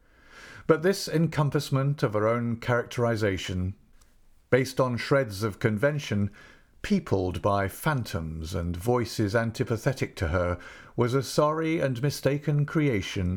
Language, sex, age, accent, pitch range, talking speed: English, male, 50-69, British, 95-135 Hz, 115 wpm